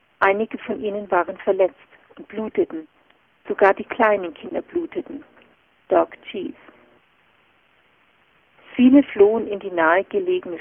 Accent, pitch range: German, 195-260 Hz